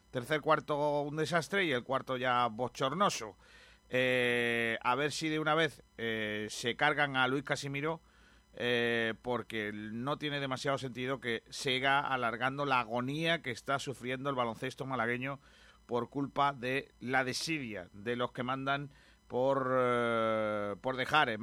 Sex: male